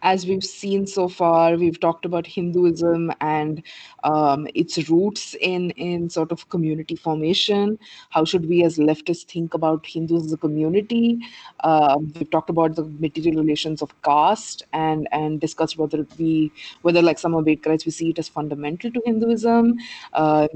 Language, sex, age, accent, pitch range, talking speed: English, female, 20-39, Indian, 155-175 Hz, 165 wpm